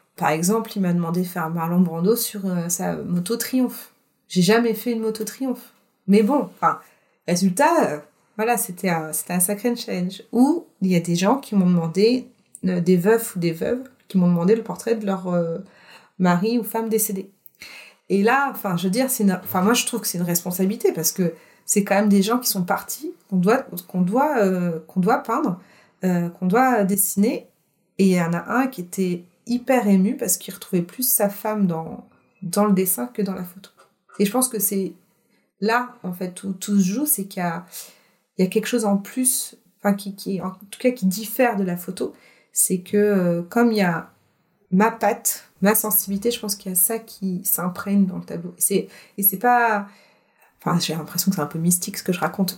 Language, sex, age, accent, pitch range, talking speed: French, female, 30-49, French, 180-225 Hz, 220 wpm